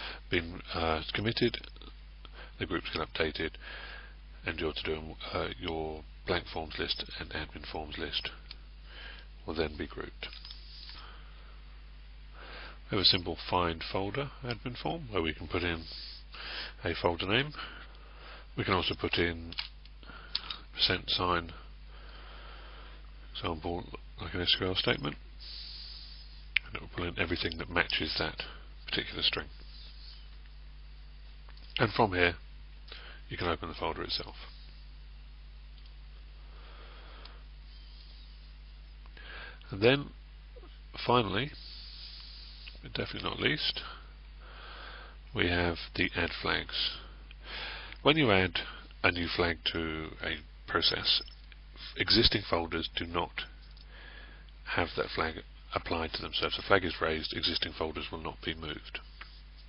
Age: 30-49